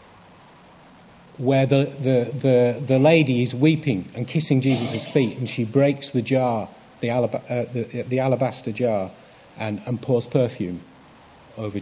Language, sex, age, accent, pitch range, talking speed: English, male, 40-59, British, 120-160 Hz, 145 wpm